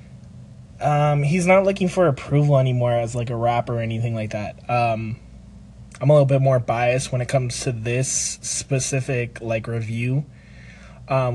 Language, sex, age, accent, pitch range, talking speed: English, male, 20-39, American, 120-145 Hz, 165 wpm